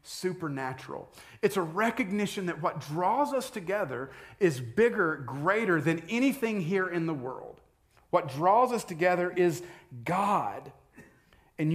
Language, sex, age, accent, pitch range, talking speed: English, male, 40-59, American, 125-180 Hz, 130 wpm